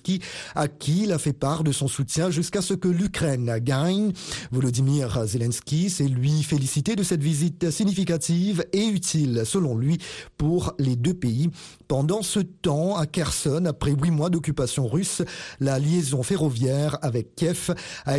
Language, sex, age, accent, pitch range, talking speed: Italian, male, 40-59, French, 140-175 Hz, 155 wpm